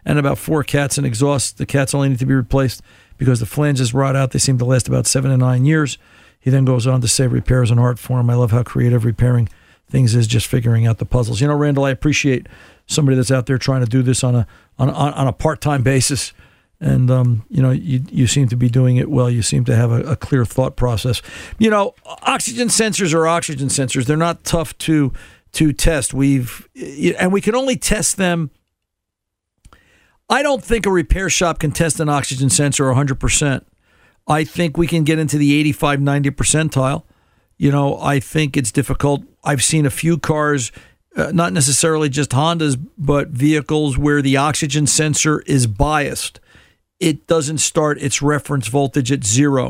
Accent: American